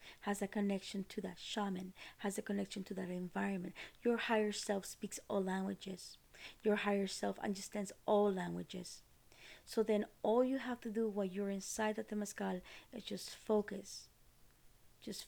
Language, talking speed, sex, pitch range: English, 155 wpm, female, 195-225 Hz